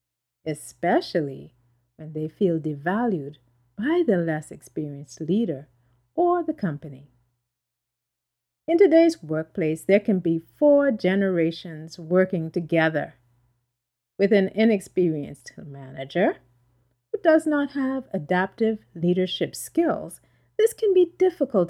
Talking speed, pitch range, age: 105 wpm, 135-220 Hz, 50-69